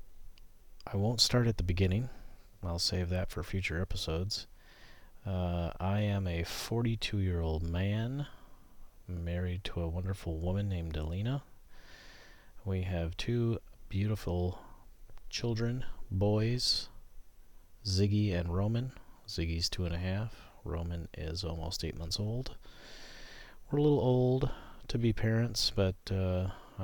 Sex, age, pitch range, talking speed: male, 30-49, 90-110 Hz, 120 wpm